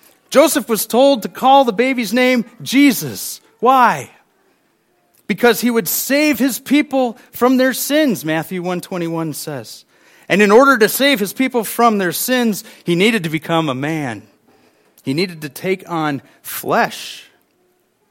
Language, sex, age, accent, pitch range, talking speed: English, male, 40-59, American, 170-245 Hz, 150 wpm